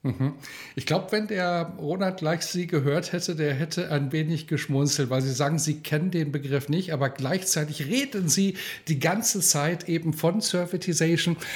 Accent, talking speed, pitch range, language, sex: German, 165 wpm, 130-160 Hz, German, male